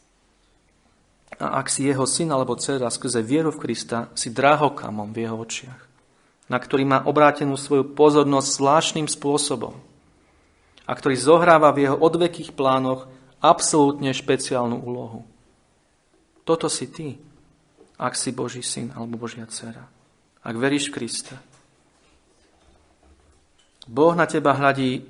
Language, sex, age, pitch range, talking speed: Slovak, male, 40-59, 115-145 Hz, 125 wpm